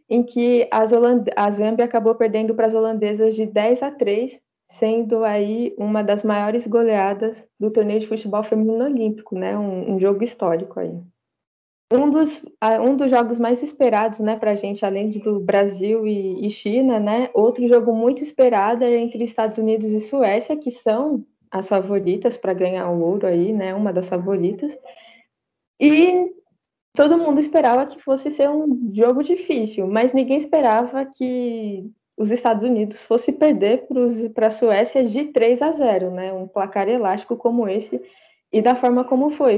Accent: Brazilian